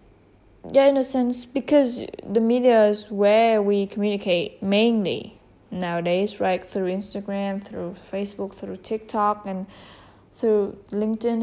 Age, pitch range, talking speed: 20-39, 180-215 Hz, 120 wpm